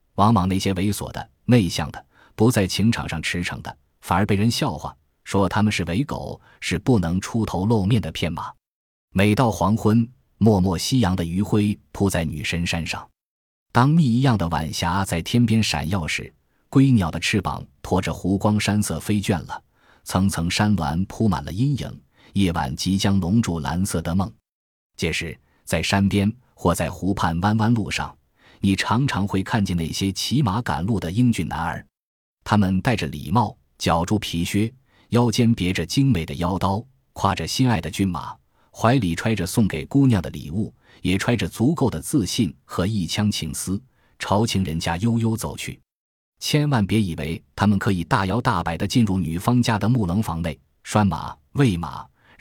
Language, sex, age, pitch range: Chinese, male, 20-39, 85-110 Hz